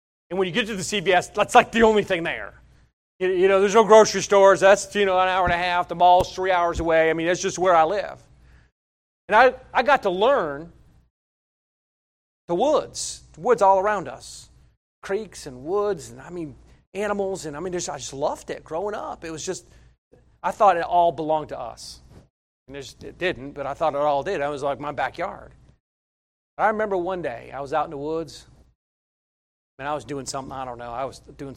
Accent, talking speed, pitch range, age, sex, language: American, 215 wpm, 130-185 Hz, 40-59, male, English